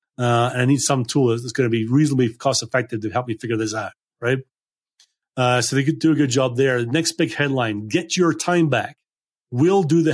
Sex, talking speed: male, 230 wpm